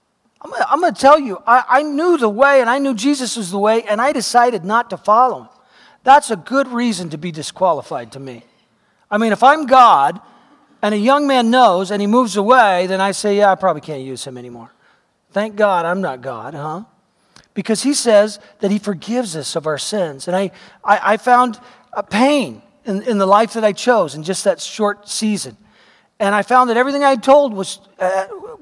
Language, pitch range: English, 185-245 Hz